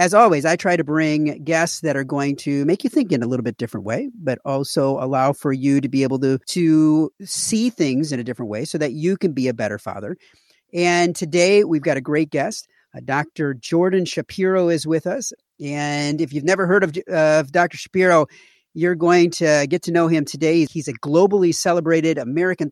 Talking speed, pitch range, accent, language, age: 210 wpm, 145-185 Hz, American, English, 40-59